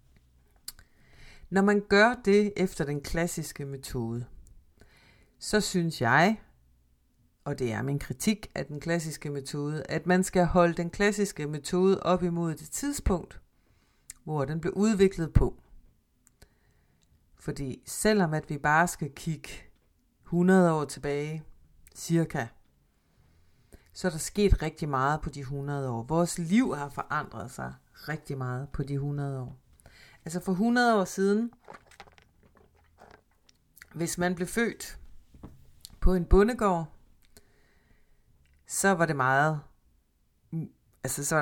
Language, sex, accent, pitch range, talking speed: Danish, female, native, 130-180 Hz, 125 wpm